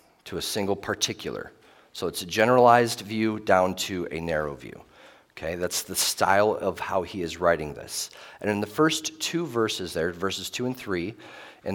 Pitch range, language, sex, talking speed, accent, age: 95-115 Hz, English, male, 185 wpm, American, 40-59